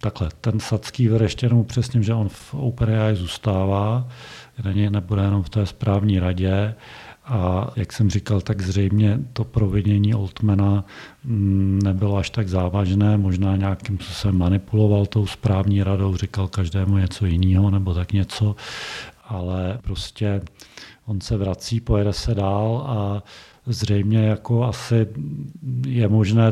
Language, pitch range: Czech, 100-110 Hz